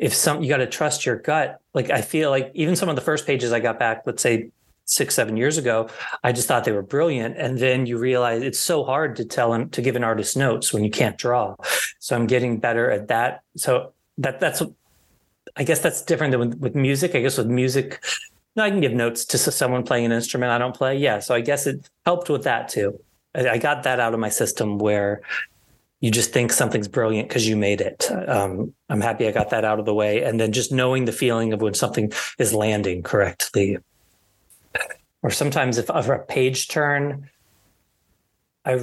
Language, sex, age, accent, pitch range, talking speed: English, male, 30-49, American, 115-135 Hz, 215 wpm